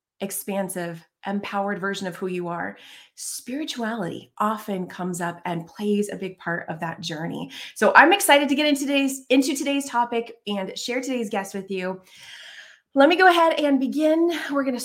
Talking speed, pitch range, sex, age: 175 wpm, 195-260 Hz, female, 30-49